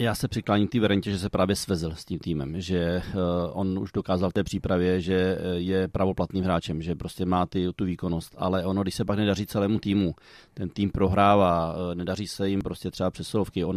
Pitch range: 90-100 Hz